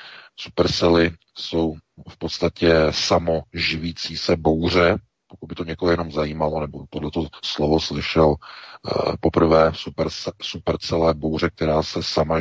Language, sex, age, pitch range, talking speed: Czech, male, 40-59, 80-85 Hz, 120 wpm